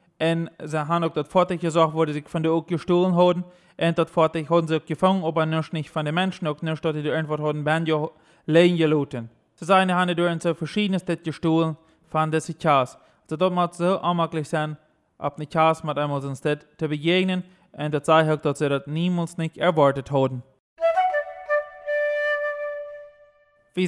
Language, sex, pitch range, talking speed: German, male, 150-180 Hz, 160 wpm